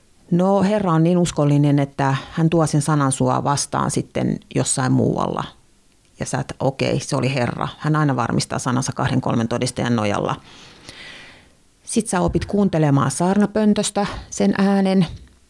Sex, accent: female, native